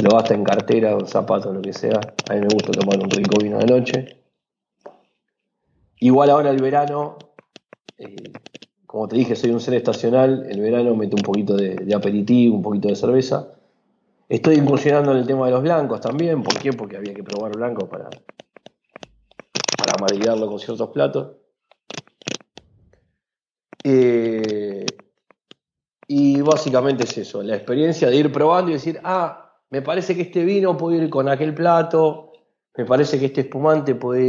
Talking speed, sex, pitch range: 165 wpm, male, 115-150 Hz